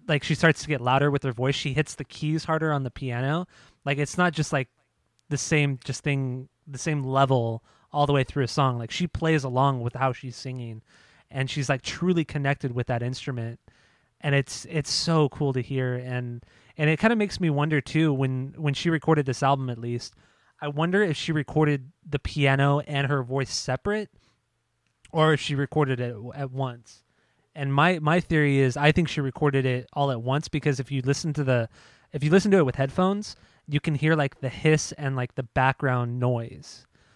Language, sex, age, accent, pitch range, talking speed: English, male, 20-39, American, 125-150 Hz, 210 wpm